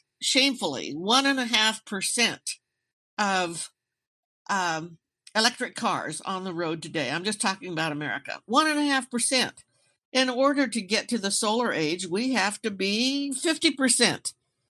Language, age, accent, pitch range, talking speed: English, 60-79, American, 185-245 Hz, 150 wpm